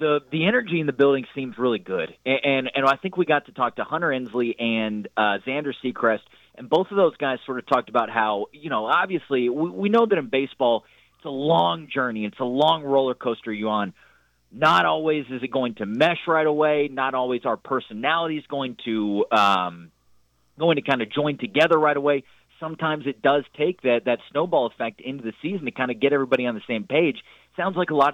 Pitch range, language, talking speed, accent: 115-150 Hz, English, 220 wpm, American